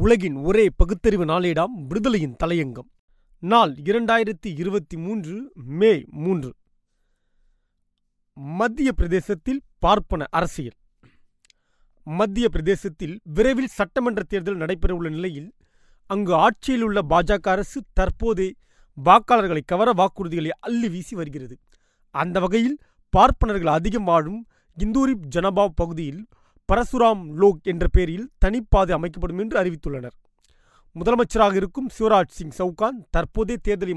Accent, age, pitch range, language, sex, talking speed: native, 30-49, 165-220 Hz, Tamil, male, 100 wpm